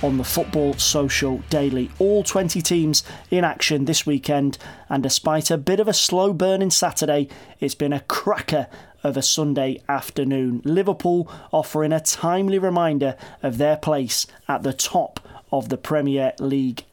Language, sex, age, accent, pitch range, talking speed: English, male, 30-49, British, 135-165 Hz, 160 wpm